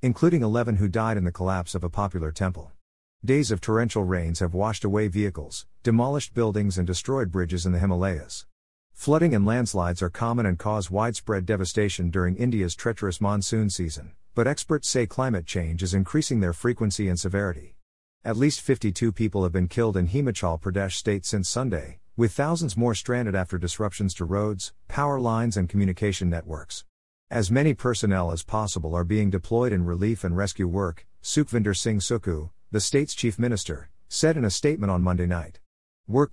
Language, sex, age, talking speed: English, male, 50-69, 175 wpm